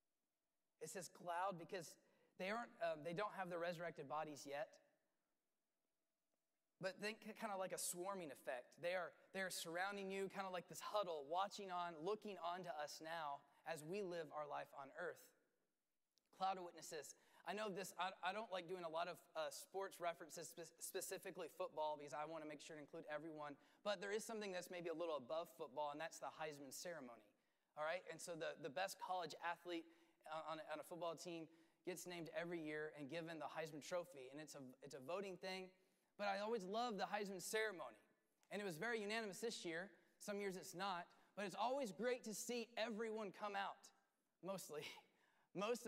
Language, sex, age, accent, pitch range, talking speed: English, male, 20-39, American, 165-200 Hz, 195 wpm